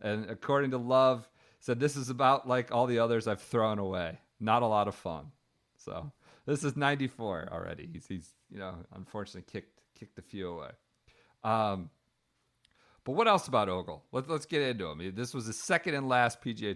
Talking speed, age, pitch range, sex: 190 wpm, 40-59, 100-145 Hz, male